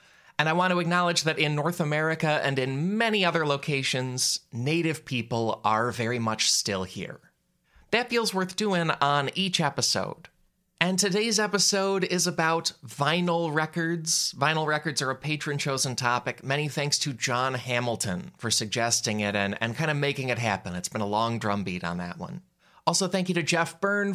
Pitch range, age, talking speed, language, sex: 110-165 Hz, 30-49, 175 wpm, English, male